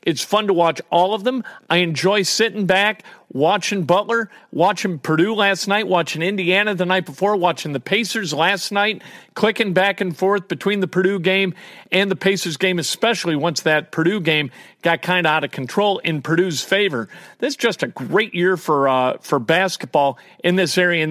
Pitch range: 155-195 Hz